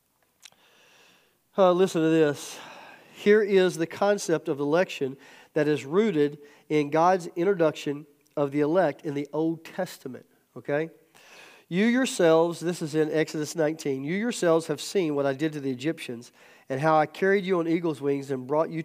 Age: 40-59